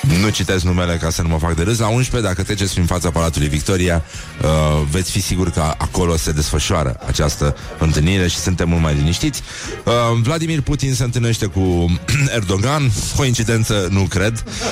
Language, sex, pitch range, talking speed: Romanian, male, 85-110 Hz, 165 wpm